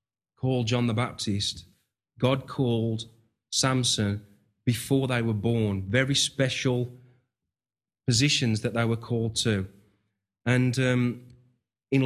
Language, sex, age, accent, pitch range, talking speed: English, male, 30-49, British, 110-130 Hz, 110 wpm